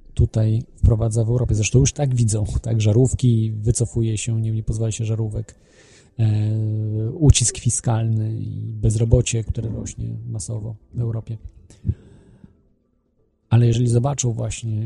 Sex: male